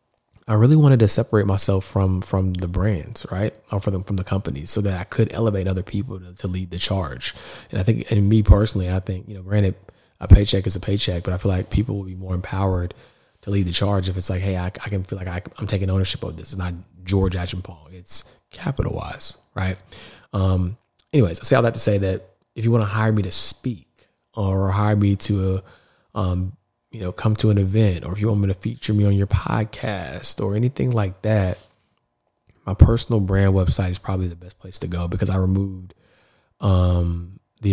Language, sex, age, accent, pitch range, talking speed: English, male, 20-39, American, 90-105 Hz, 225 wpm